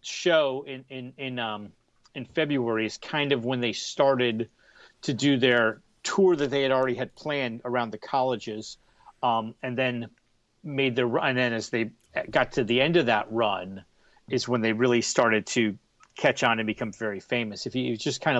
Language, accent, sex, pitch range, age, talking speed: English, American, male, 110-130 Hz, 40-59, 190 wpm